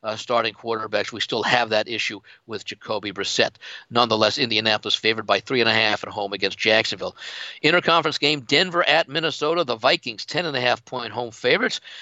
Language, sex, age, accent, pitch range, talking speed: English, male, 60-79, American, 120-150 Hz, 185 wpm